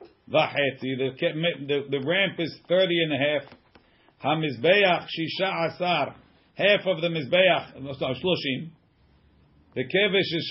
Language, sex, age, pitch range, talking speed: English, male, 50-69, 140-185 Hz, 115 wpm